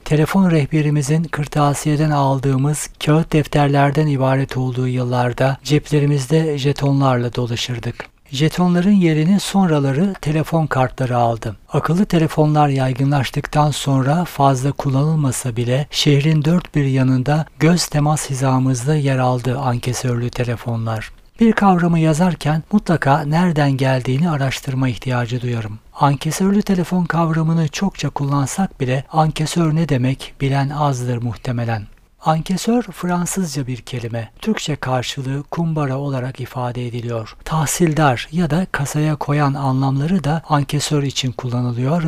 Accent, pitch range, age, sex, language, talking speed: native, 130-160 Hz, 60-79, male, Turkish, 110 wpm